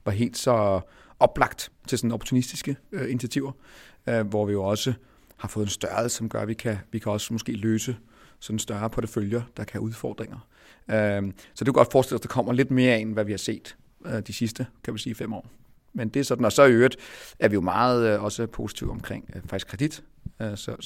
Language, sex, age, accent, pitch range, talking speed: Danish, male, 40-59, native, 105-120 Hz, 235 wpm